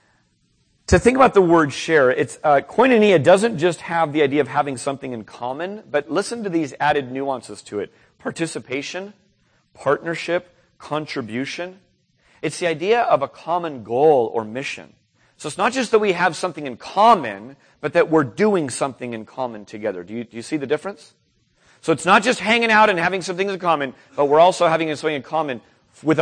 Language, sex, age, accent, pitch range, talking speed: English, male, 40-59, American, 135-180 Hz, 190 wpm